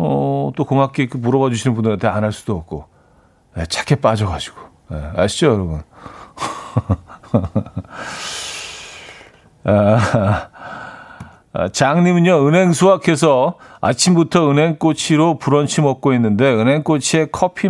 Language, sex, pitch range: Korean, male, 105-155 Hz